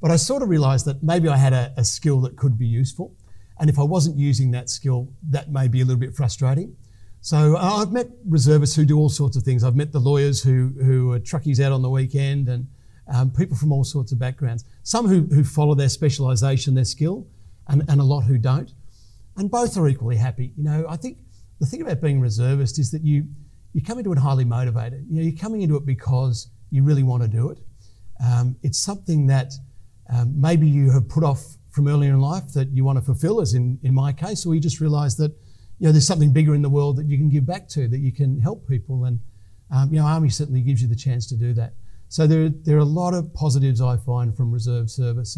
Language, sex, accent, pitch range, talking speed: English, male, Australian, 125-150 Hz, 245 wpm